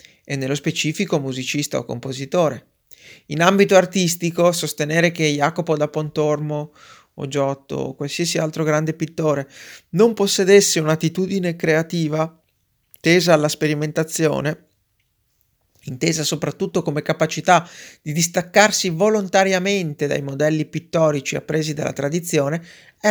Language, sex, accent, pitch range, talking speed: Italian, male, native, 145-180 Hz, 110 wpm